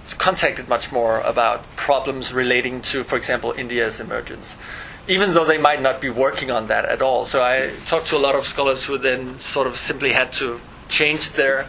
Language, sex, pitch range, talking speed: English, male, 125-145 Hz, 200 wpm